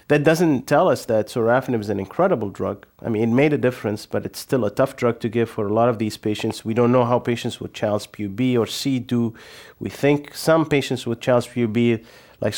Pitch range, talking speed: 110-130 Hz, 235 wpm